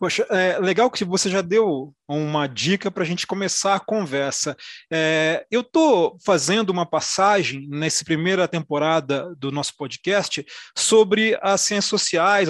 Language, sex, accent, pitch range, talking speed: Portuguese, male, Brazilian, 165-215 Hz, 145 wpm